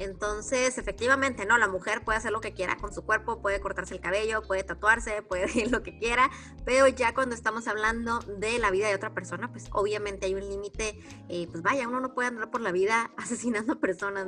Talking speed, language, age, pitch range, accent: 225 wpm, Spanish, 20-39, 205-255 Hz, Mexican